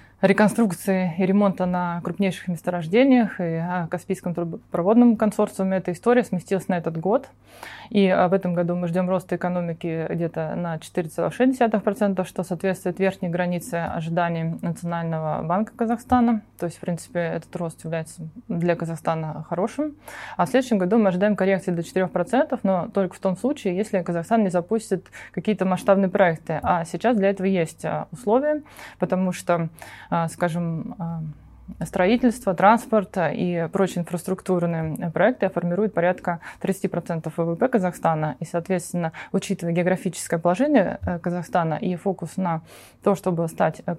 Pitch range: 170-200 Hz